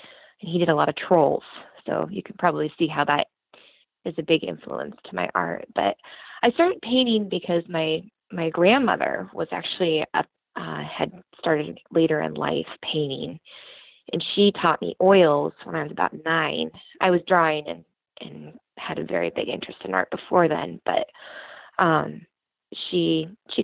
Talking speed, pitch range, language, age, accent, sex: 170 wpm, 160-200 Hz, English, 20-39, American, female